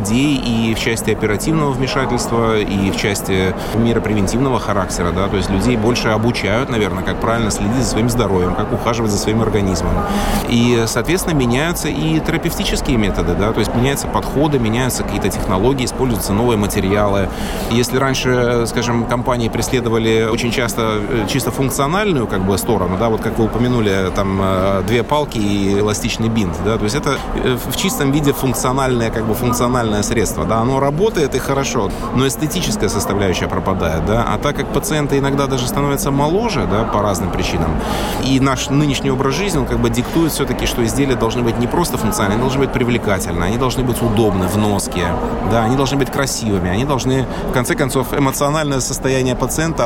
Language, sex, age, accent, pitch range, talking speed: Russian, male, 30-49, native, 105-135 Hz, 170 wpm